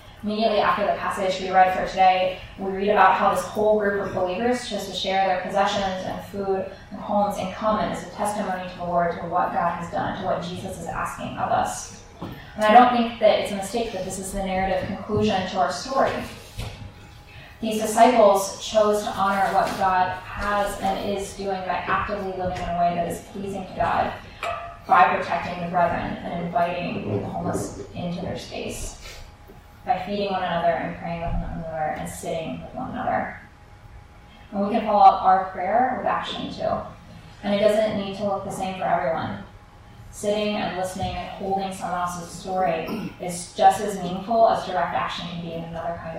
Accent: American